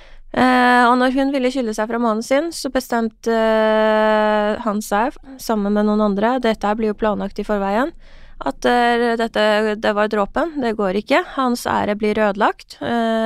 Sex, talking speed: female, 170 wpm